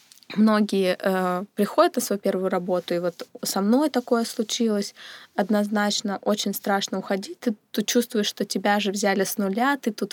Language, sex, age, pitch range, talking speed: Russian, female, 20-39, 195-230 Hz, 160 wpm